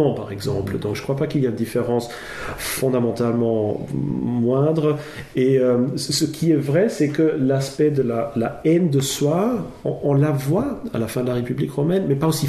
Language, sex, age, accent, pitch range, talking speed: French, male, 40-59, French, 115-140 Hz, 205 wpm